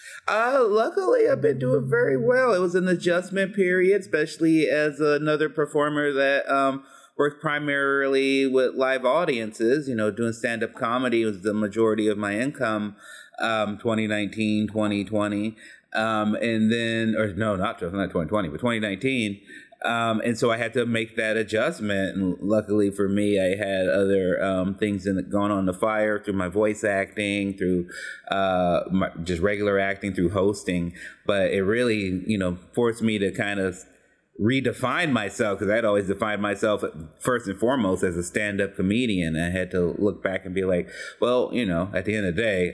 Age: 30-49